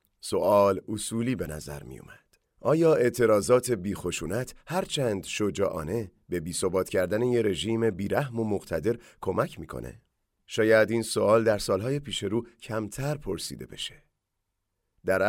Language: English